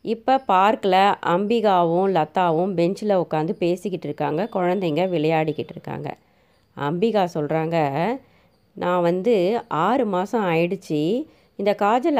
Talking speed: 100 wpm